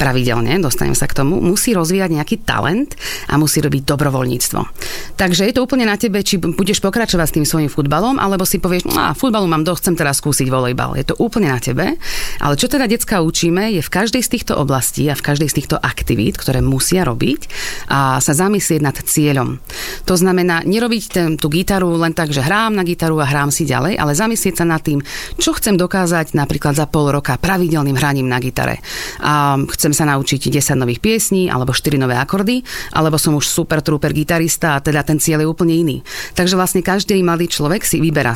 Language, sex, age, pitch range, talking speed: Slovak, female, 40-59, 140-180 Hz, 205 wpm